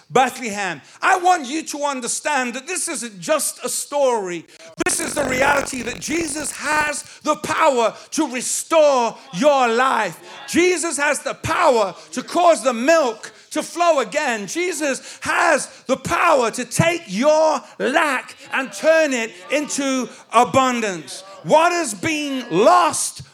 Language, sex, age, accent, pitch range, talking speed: English, male, 50-69, British, 220-310 Hz, 135 wpm